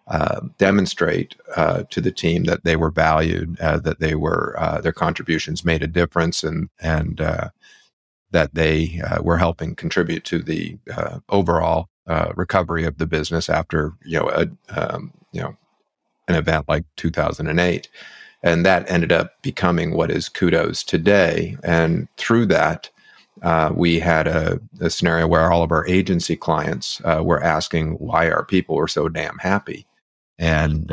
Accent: American